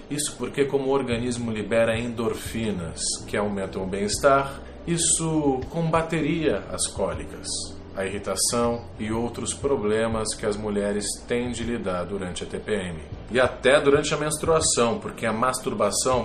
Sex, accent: male, Brazilian